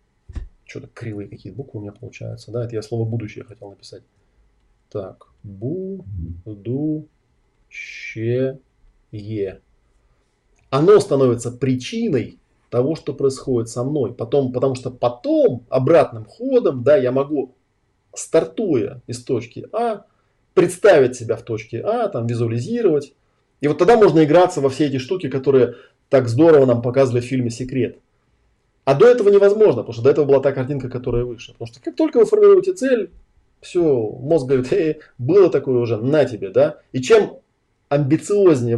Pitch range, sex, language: 120-155 Hz, male, Russian